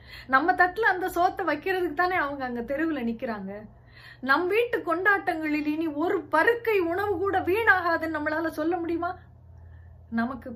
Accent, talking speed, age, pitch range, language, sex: native, 125 wpm, 30-49, 240-345 Hz, Tamil, female